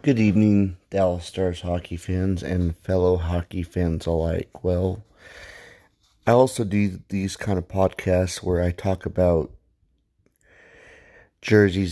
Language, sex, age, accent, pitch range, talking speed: English, male, 30-49, American, 90-100 Hz, 120 wpm